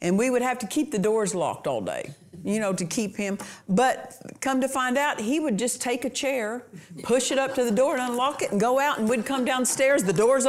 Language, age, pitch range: English, 50-69, 200-270 Hz